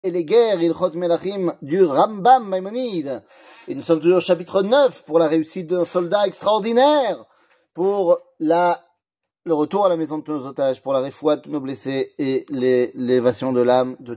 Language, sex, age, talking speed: French, male, 30-49, 195 wpm